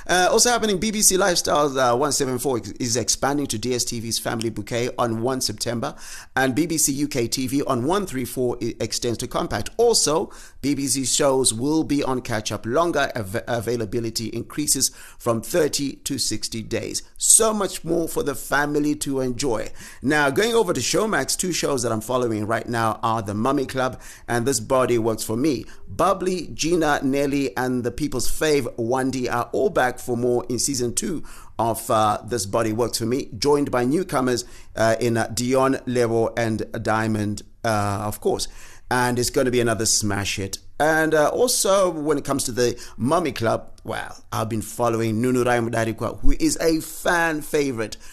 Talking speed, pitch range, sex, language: 170 wpm, 110-140 Hz, male, English